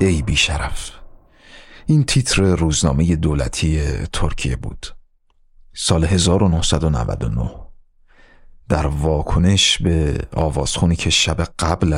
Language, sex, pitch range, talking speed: Persian, male, 75-95 Hz, 85 wpm